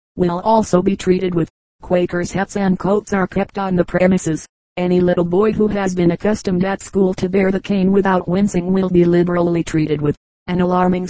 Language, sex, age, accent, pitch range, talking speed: English, female, 40-59, American, 175-195 Hz, 195 wpm